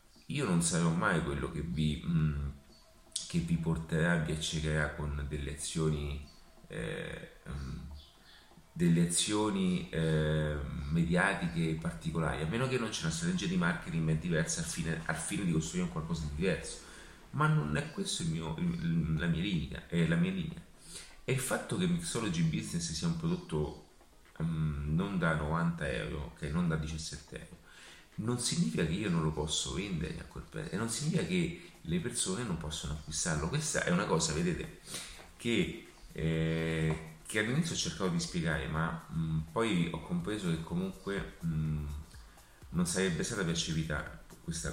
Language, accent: Italian, native